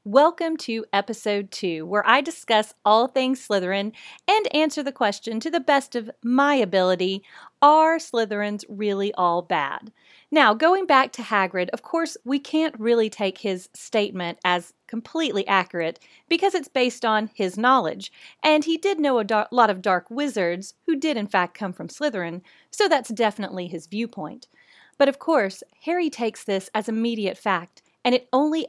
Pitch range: 195-280 Hz